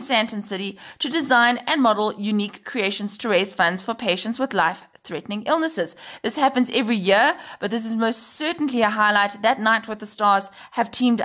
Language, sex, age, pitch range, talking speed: English, female, 30-49, 195-235 Hz, 185 wpm